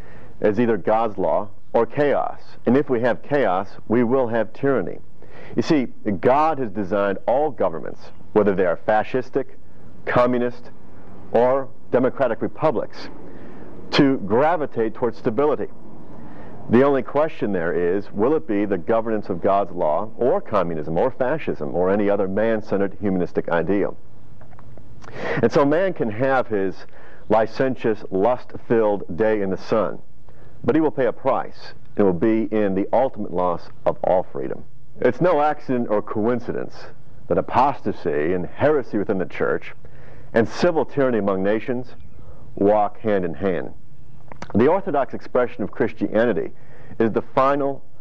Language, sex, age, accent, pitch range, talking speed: English, male, 50-69, American, 100-130 Hz, 140 wpm